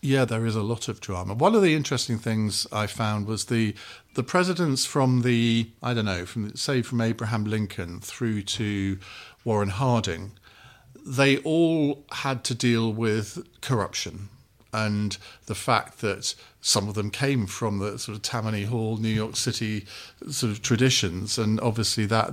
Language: English